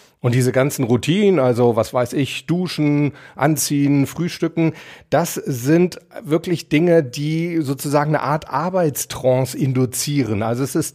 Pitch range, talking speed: 125-155 Hz, 130 wpm